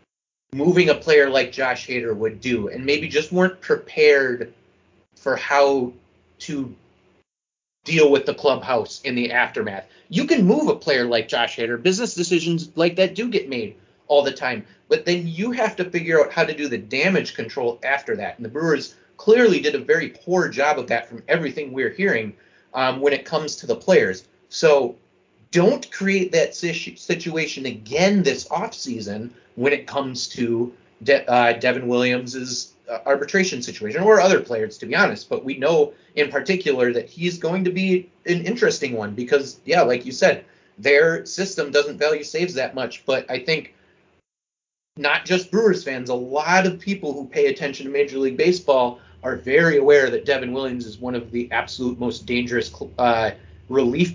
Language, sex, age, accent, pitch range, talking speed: English, male, 30-49, American, 125-185 Hz, 180 wpm